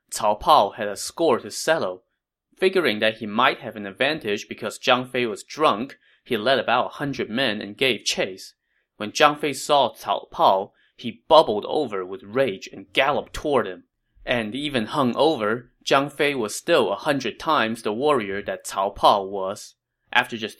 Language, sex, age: English, male, 20-39